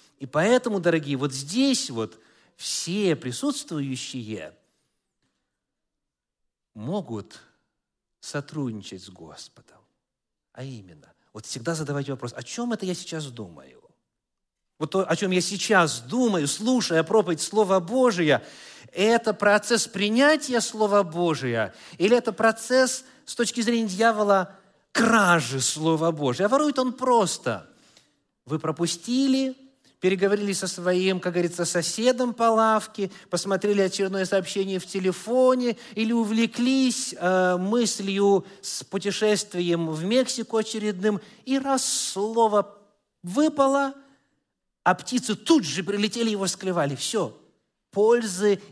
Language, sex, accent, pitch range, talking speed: Russian, male, native, 165-225 Hz, 110 wpm